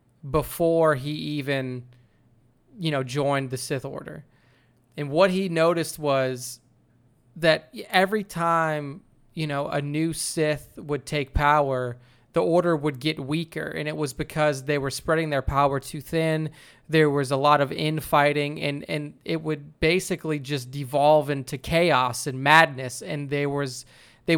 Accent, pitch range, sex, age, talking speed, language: American, 135-155 Hz, male, 20-39, 155 wpm, English